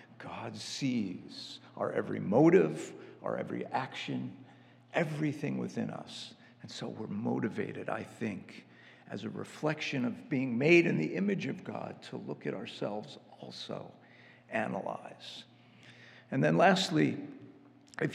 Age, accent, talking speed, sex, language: 50-69, American, 125 wpm, male, English